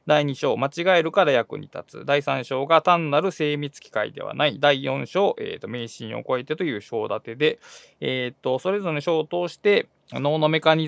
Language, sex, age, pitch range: Japanese, male, 20-39, 135-215 Hz